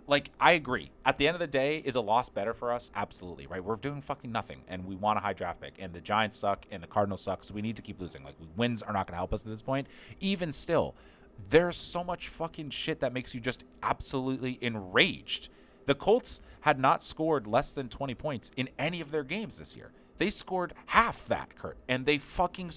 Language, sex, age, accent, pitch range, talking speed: English, male, 30-49, American, 105-155 Hz, 235 wpm